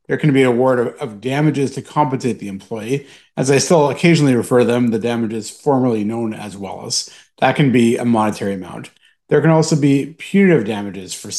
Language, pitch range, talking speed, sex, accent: English, 115-150 Hz, 195 wpm, male, American